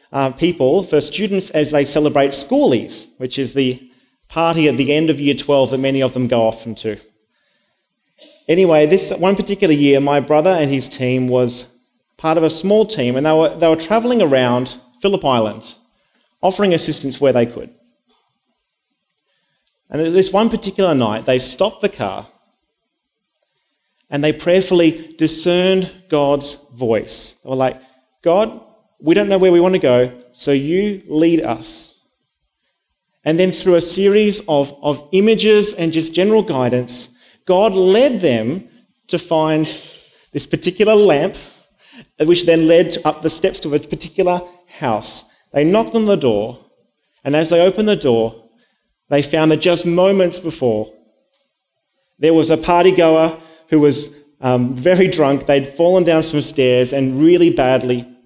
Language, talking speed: English, 155 wpm